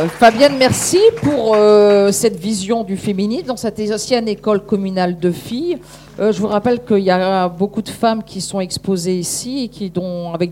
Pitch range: 185-230 Hz